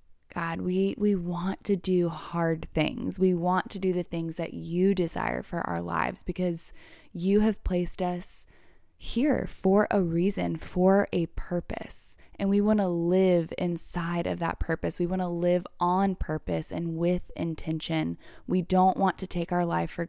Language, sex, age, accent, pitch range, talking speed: English, female, 10-29, American, 170-200 Hz, 175 wpm